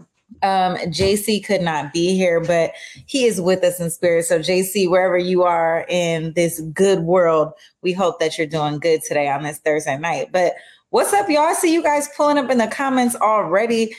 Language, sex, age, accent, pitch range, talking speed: English, female, 30-49, American, 170-235 Hz, 200 wpm